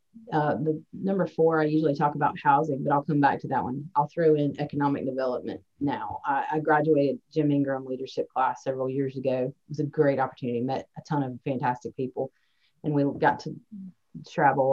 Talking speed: 195 wpm